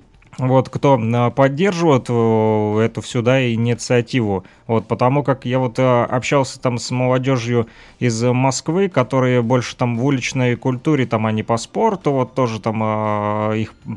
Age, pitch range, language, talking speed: 20-39, 115-145 Hz, Russian, 140 wpm